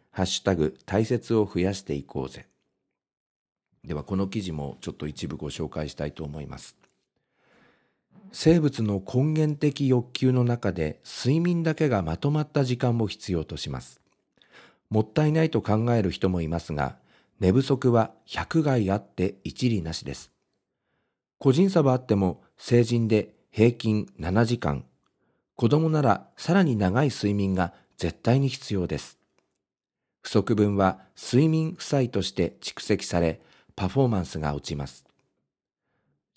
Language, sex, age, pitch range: Japanese, male, 50-69, 85-125 Hz